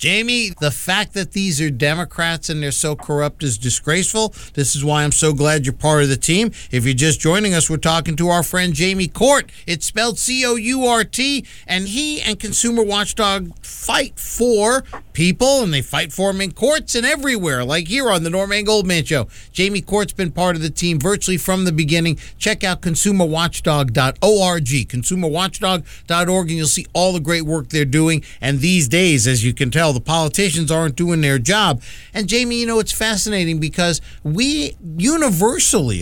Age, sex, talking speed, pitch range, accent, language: 50-69, male, 180 wpm, 155-215 Hz, American, English